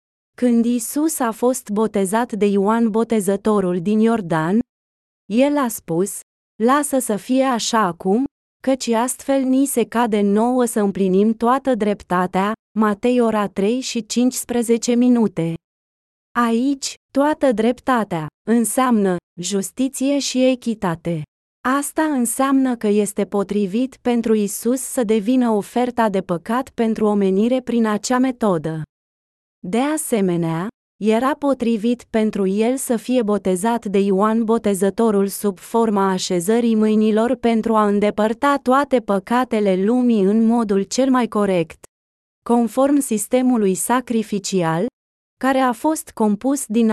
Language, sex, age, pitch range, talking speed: Romanian, female, 20-39, 200-245 Hz, 120 wpm